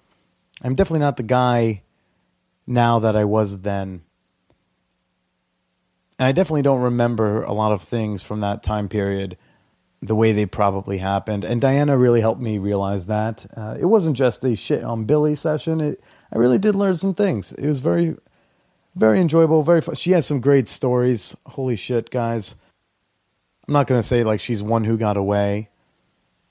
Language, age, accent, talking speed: English, 30-49, American, 170 wpm